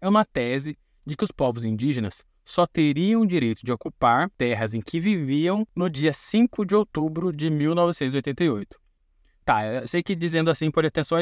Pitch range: 130-170 Hz